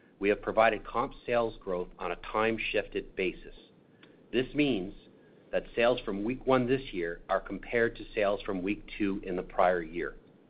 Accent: American